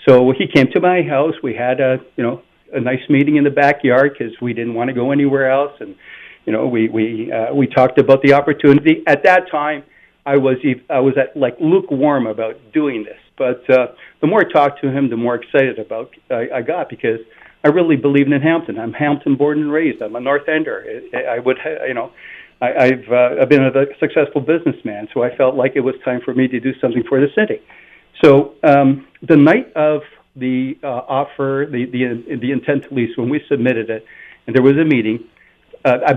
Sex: male